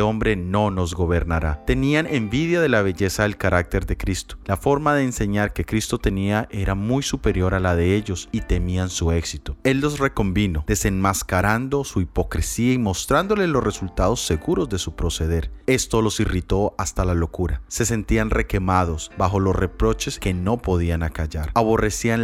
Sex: male